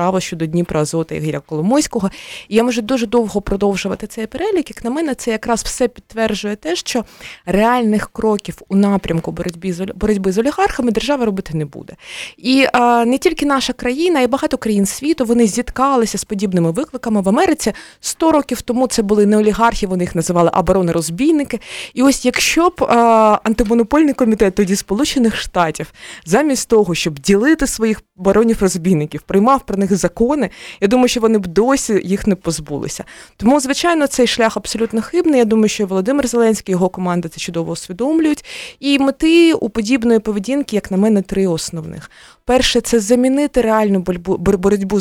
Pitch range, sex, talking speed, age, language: 190-255 Hz, female, 175 wpm, 20-39, Ukrainian